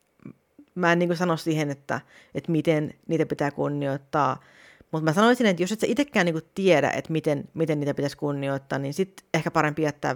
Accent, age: native, 30-49